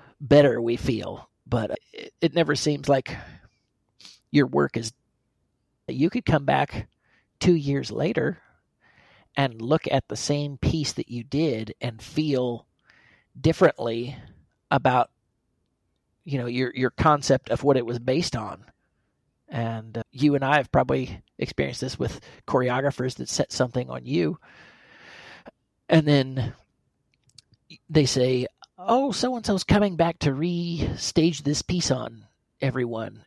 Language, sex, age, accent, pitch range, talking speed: English, male, 30-49, American, 120-150 Hz, 135 wpm